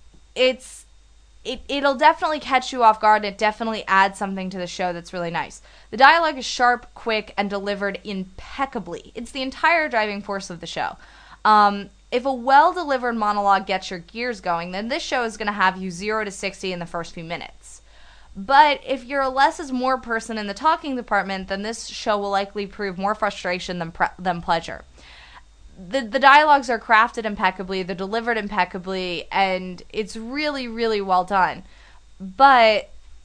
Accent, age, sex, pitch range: American, 20-39, female, 185-240 Hz